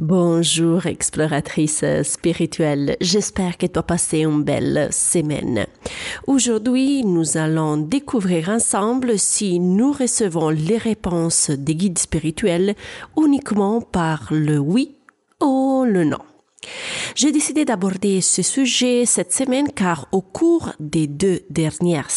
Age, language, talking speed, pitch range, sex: 30-49, French, 120 wpm, 165-245 Hz, female